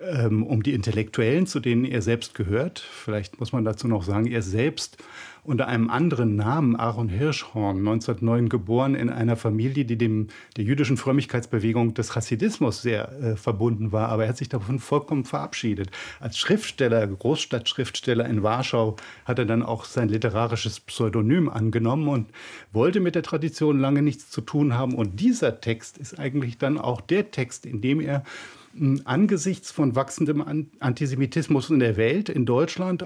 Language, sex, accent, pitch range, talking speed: German, male, German, 115-145 Hz, 160 wpm